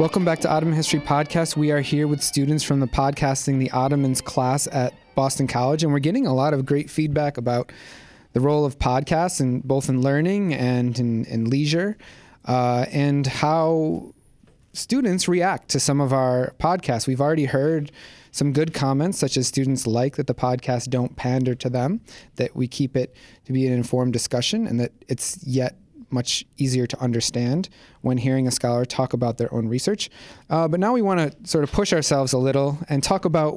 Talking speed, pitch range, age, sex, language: 195 wpm, 125-155 Hz, 30-49, male, English